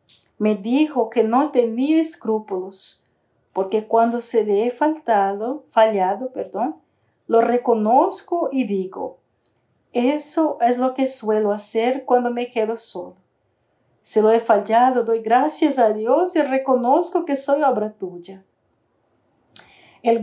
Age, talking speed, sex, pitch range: 40-59, 130 wpm, female, 205-265 Hz